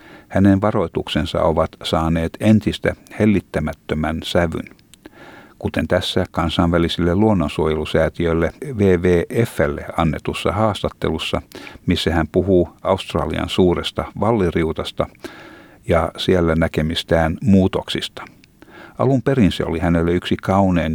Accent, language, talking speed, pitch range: native, Finnish, 90 wpm, 80-100 Hz